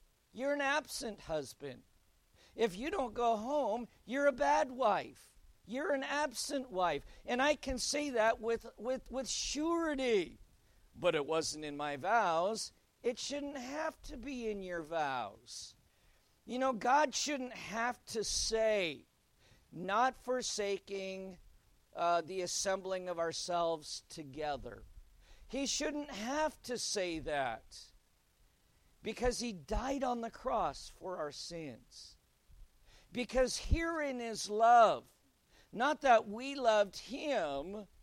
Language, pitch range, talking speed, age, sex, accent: English, 185-275 Hz, 125 wpm, 50-69, male, American